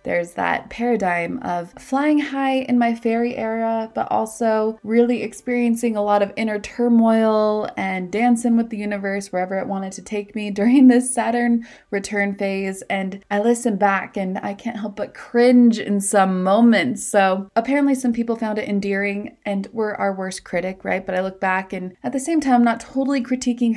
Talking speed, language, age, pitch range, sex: 185 wpm, English, 20-39, 190-240 Hz, female